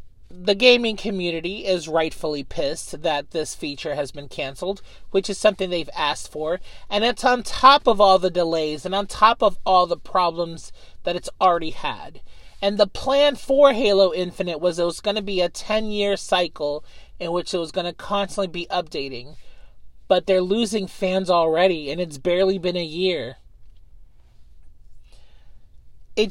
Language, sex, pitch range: English, male, 165-205 Hz